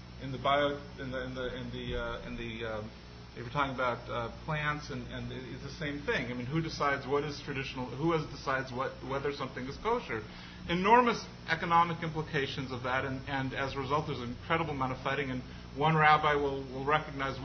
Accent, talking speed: American, 210 wpm